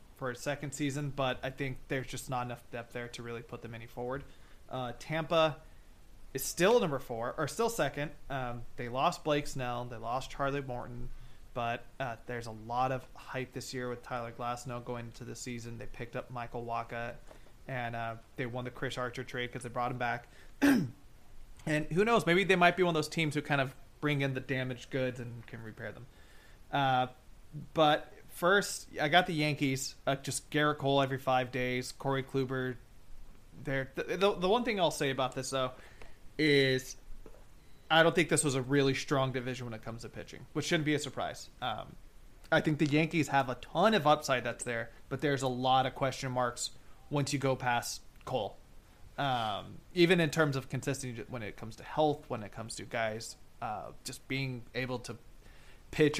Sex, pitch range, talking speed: male, 120-145 Hz, 200 wpm